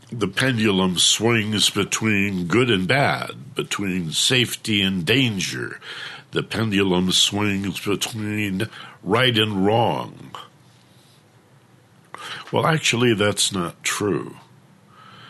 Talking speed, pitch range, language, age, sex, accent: 90 wpm, 90-130 Hz, English, 60-79, male, American